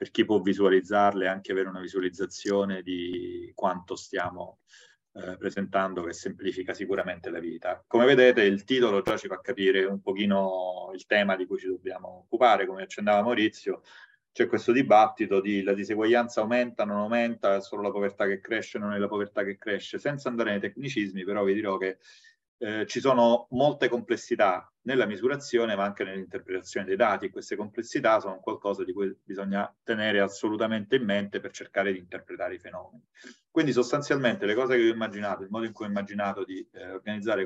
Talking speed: 180 wpm